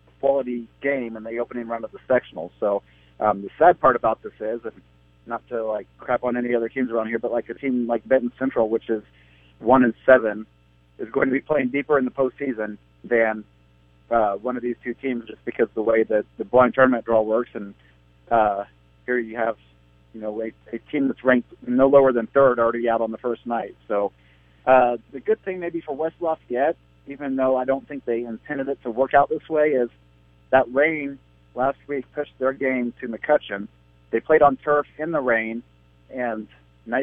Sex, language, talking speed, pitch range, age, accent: male, English, 210 wpm, 100-135 Hz, 40-59, American